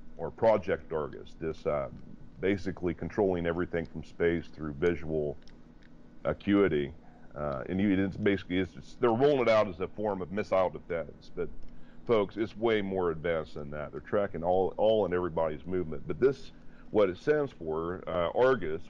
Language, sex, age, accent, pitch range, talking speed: English, male, 40-59, American, 80-100 Hz, 170 wpm